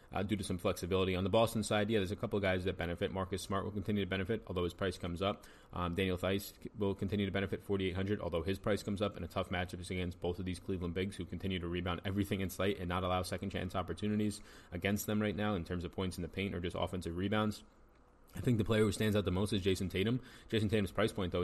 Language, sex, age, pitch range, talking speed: English, male, 20-39, 90-105 Hz, 270 wpm